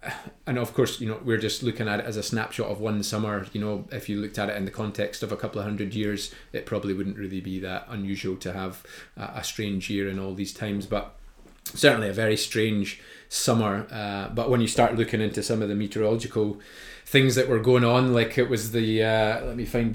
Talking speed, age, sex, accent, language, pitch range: 235 wpm, 20-39, male, British, English, 100-120 Hz